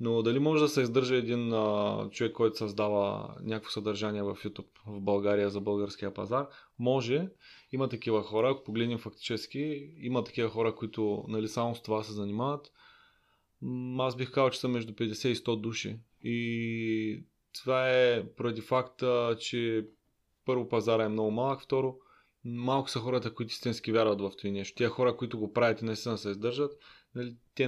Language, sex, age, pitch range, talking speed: Bulgarian, male, 20-39, 110-130 Hz, 170 wpm